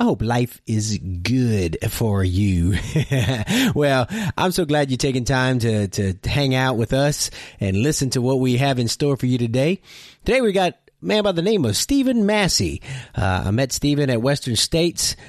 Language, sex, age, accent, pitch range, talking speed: English, male, 30-49, American, 120-160 Hz, 190 wpm